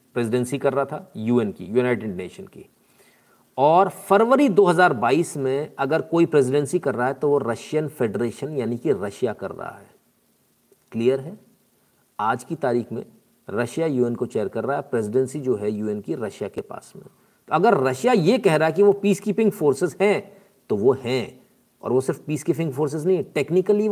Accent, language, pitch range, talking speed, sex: native, Hindi, 125-165 Hz, 190 wpm, male